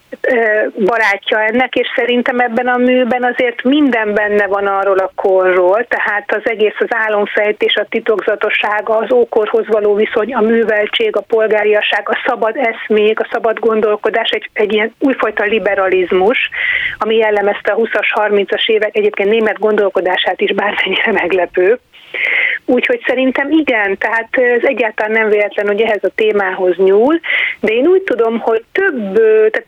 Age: 30-49